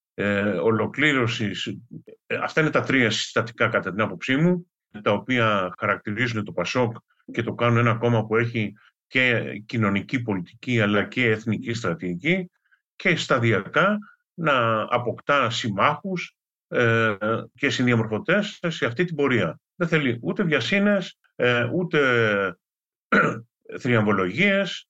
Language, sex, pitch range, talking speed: Greek, male, 110-165 Hz, 120 wpm